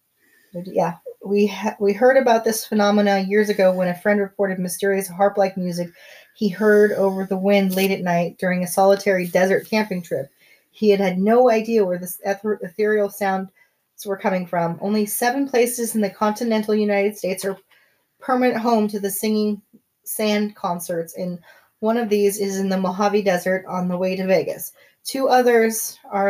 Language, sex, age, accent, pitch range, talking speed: English, female, 30-49, American, 190-220 Hz, 175 wpm